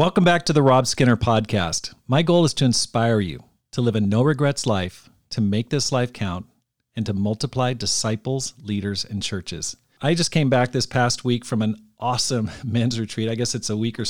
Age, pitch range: 40-59, 110-130 Hz